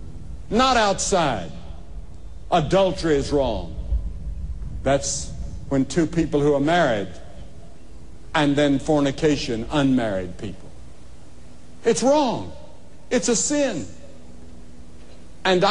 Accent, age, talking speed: American, 60-79, 90 wpm